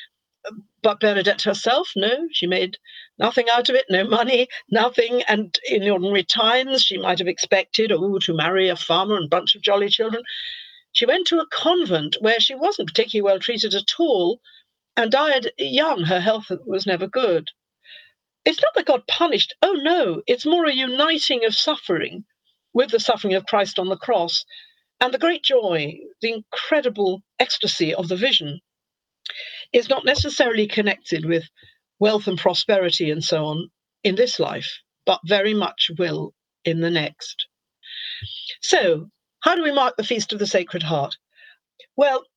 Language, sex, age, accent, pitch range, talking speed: English, female, 50-69, British, 180-260 Hz, 165 wpm